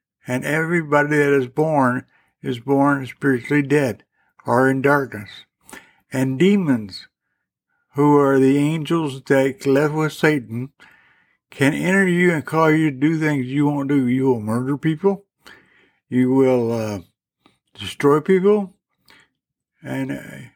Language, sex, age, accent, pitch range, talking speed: English, male, 60-79, American, 130-155 Hz, 130 wpm